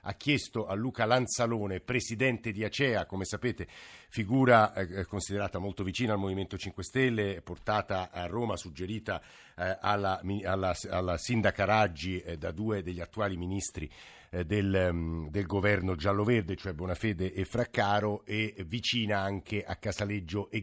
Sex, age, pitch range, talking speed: male, 50-69, 100-125 Hz, 145 wpm